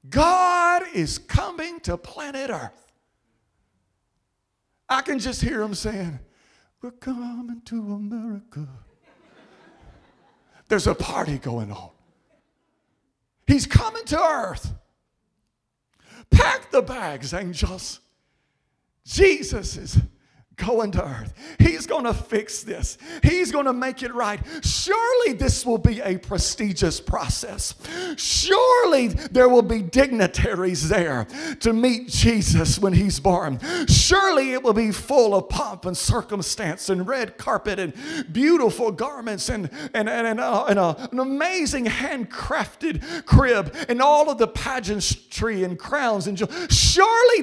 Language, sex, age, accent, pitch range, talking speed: English, male, 40-59, American, 195-290 Hz, 125 wpm